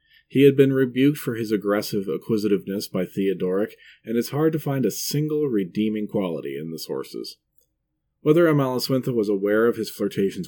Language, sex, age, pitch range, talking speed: English, male, 40-59, 90-135 Hz, 165 wpm